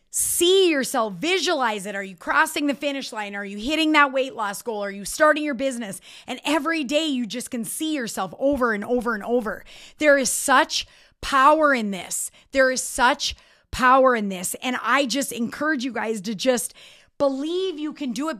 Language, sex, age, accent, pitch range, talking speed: English, female, 30-49, American, 245-315 Hz, 195 wpm